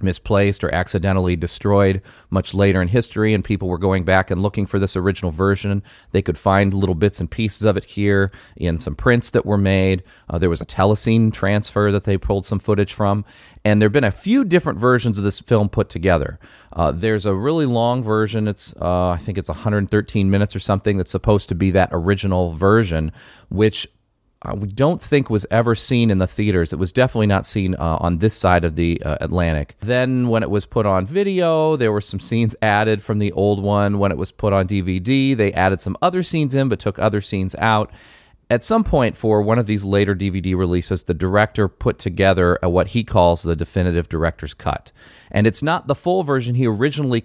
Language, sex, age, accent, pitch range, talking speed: English, male, 40-59, American, 95-115 Hz, 215 wpm